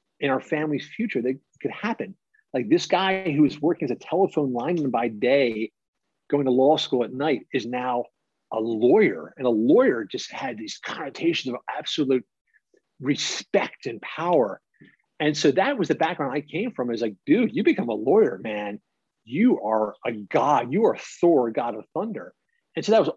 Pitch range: 125-170 Hz